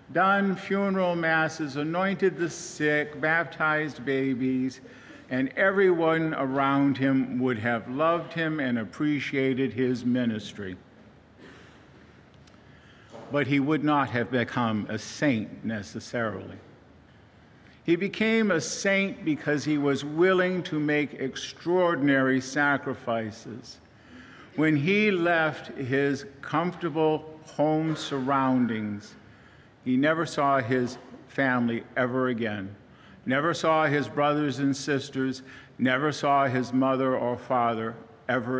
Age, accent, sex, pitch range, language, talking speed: 50-69, American, male, 125-155 Hz, English, 105 wpm